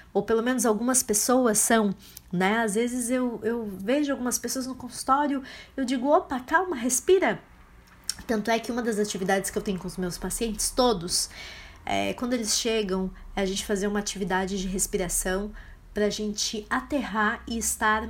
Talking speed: 175 wpm